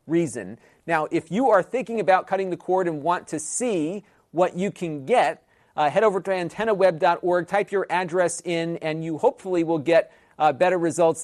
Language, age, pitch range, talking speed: English, 40-59, 155-190 Hz, 185 wpm